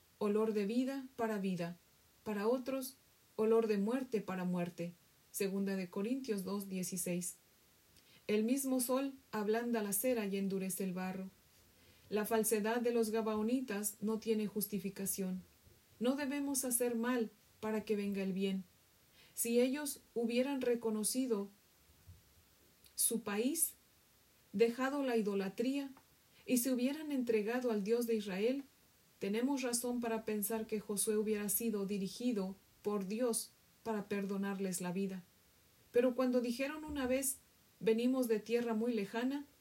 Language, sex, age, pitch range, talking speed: Spanish, female, 40-59, 200-245 Hz, 130 wpm